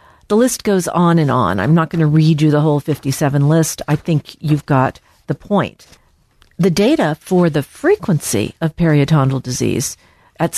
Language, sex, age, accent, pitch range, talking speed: English, female, 50-69, American, 150-205 Hz, 175 wpm